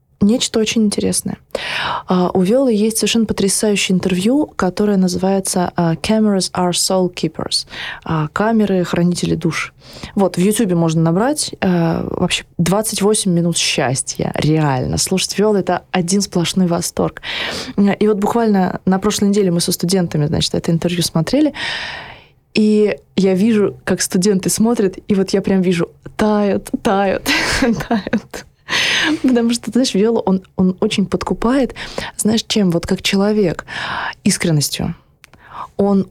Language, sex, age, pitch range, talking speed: Russian, female, 20-39, 175-210 Hz, 135 wpm